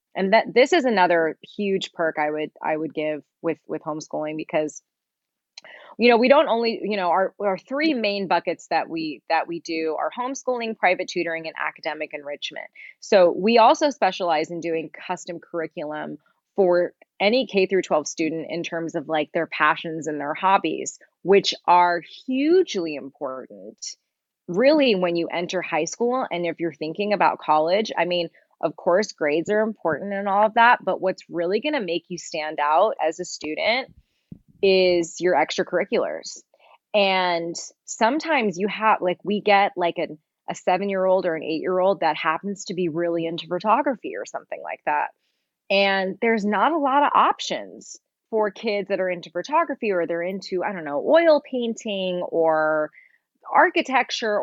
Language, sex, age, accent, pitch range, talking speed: English, female, 20-39, American, 165-215 Hz, 170 wpm